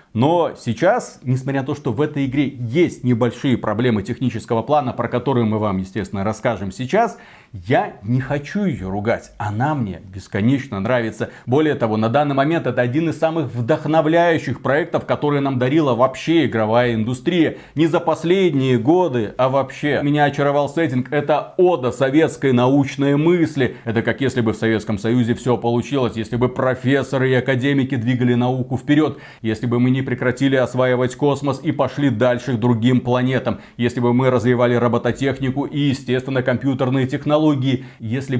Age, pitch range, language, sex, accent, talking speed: 30-49, 120-145 Hz, Russian, male, native, 160 wpm